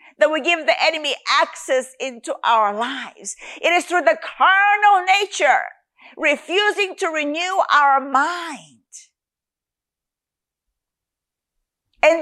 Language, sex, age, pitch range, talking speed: English, female, 50-69, 290-370 Hz, 105 wpm